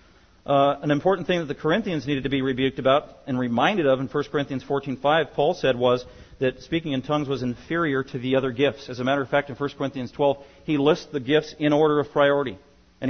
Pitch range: 130-175 Hz